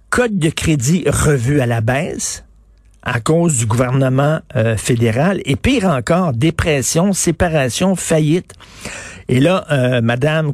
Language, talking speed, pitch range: French, 130 wpm, 130-170 Hz